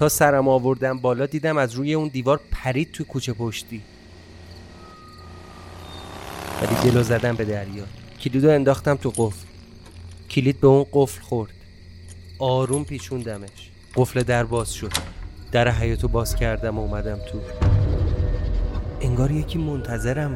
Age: 30-49